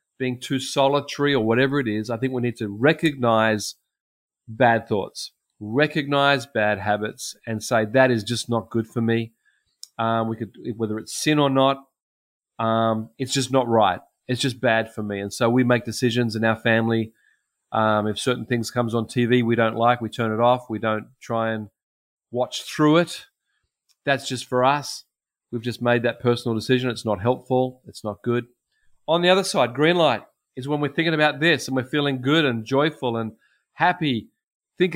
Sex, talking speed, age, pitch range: male, 190 wpm, 30-49, 115-140 Hz